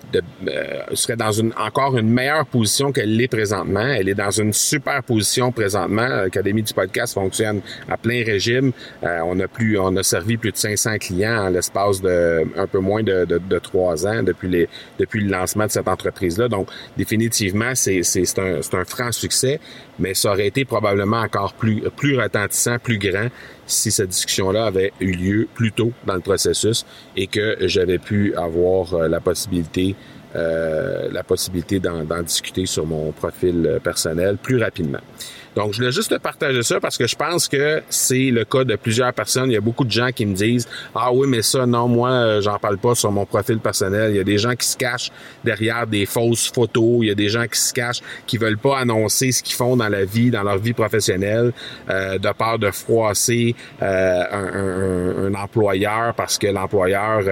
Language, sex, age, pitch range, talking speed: French, male, 40-59, 95-120 Hz, 205 wpm